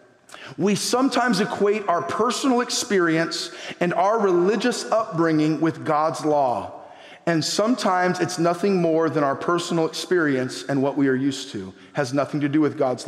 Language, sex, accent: English, male, American